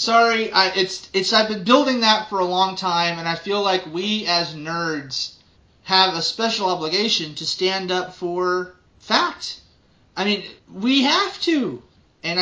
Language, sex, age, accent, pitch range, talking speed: English, male, 30-49, American, 155-200 Hz, 165 wpm